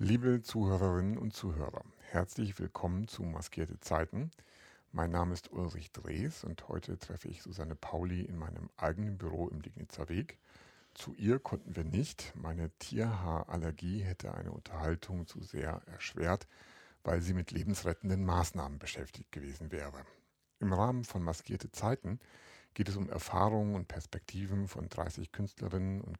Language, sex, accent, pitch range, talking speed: German, male, German, 80-100 Hz, 145 wpm